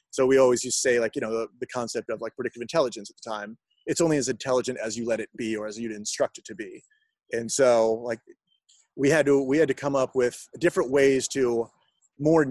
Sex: male